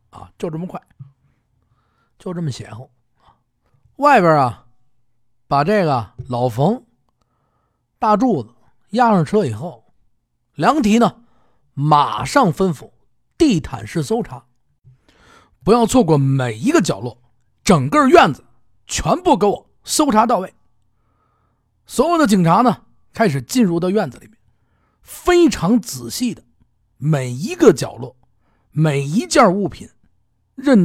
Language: Chinese